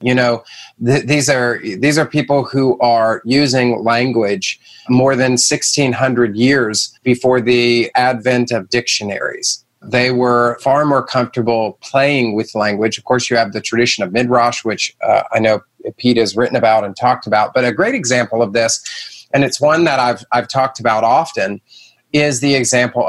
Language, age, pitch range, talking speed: English, 30-49, 115-135 Hz, 170 wpm